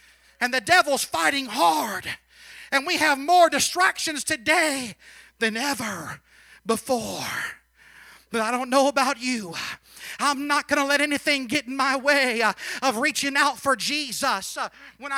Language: English